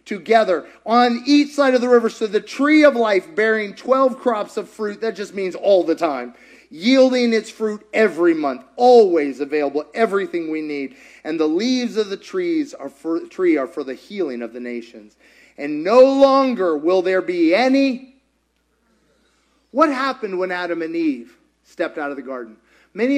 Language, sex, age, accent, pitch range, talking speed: English, male, 30-49, American, 165-245 Hz, 175 wpm